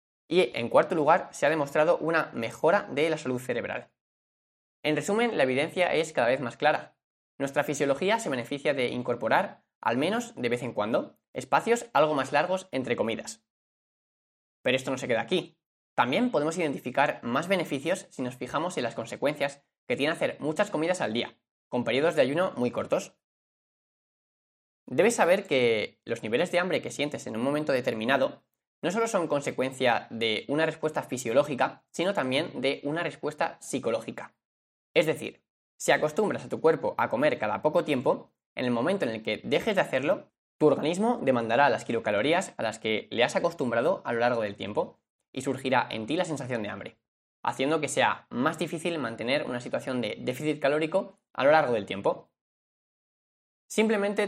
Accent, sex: Spanish, male